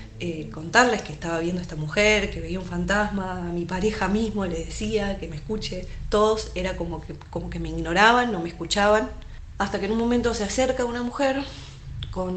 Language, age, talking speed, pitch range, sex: Spanish, 20-39, 205 wpm, 120-200 Hz, female